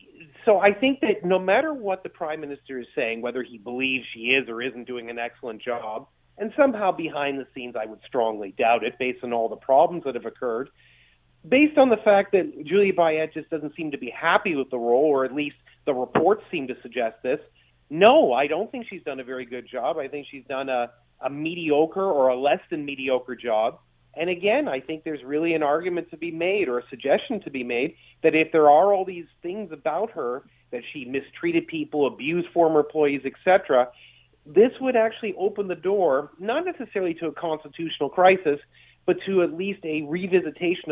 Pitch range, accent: 130-185 Hz, American